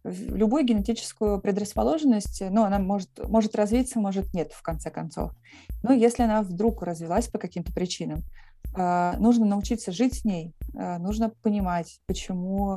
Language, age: Russian, 20-39